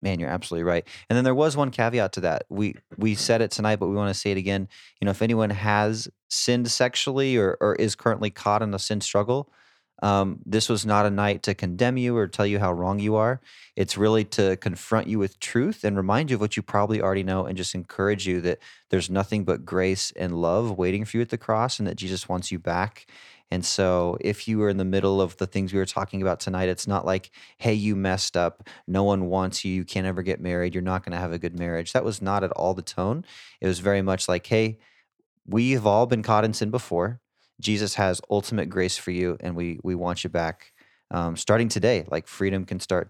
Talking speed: 240 wpm